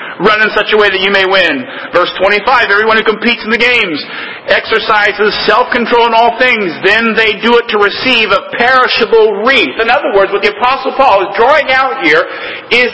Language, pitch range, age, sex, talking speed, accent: English, 205-250 Hz, 40-59, male, 200 wpm, American